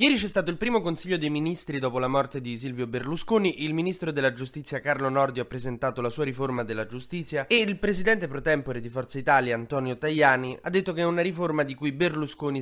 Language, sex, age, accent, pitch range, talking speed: Italian, male, 20-39, native, 125-155 Hz, 220 wpm